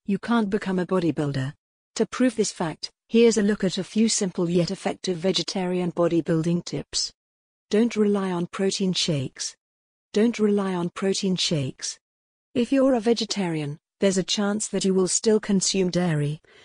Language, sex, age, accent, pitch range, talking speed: English, female, 50-69, British, 170-205 Hz, 160 wpm